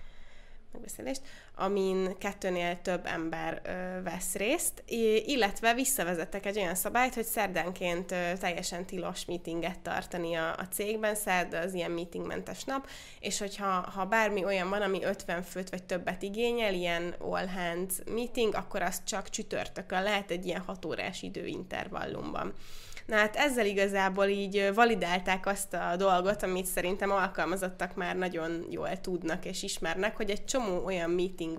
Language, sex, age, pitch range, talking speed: Hungarian, female, 20-39, 180-210 Hz, 140 wpm